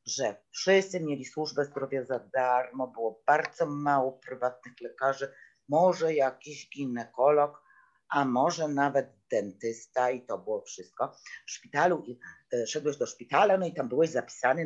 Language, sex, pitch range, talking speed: Polish, female, 125-185 Hz, 145 wpm